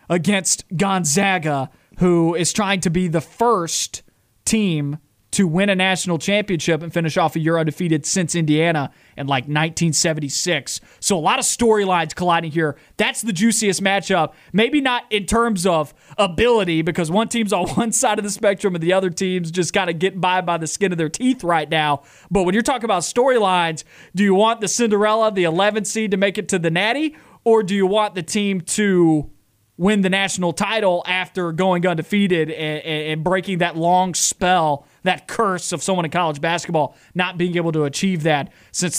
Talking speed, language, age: 190 wpm, English, 30-49